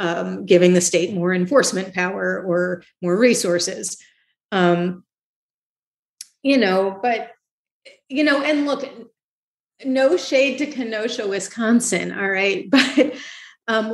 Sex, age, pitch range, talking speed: female, 40-59, 170-205 Hz, 115 wpm